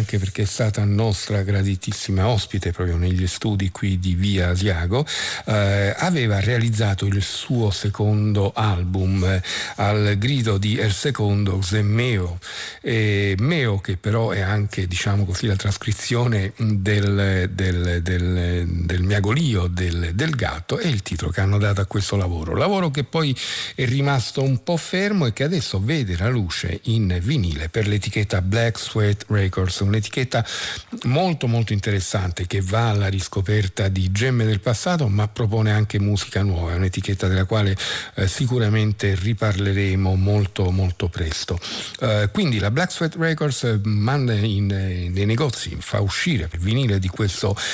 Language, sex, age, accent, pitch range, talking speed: Italian, male, 50-69, native, 95-115 Hz, 150 wpm